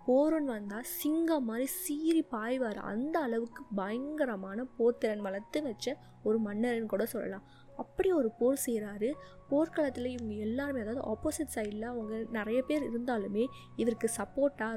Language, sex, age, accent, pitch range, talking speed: Tamil, female, 20-39, native, 215-260 Hz, 130 wpm